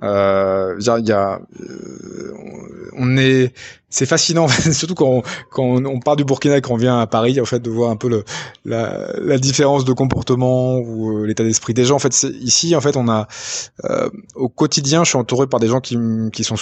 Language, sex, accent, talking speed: French, male, French, 215 wpm